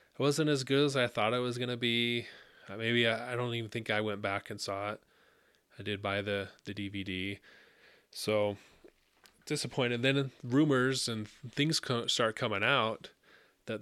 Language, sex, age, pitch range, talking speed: English, male, 20-39, 100-115 Hz, 170 wpm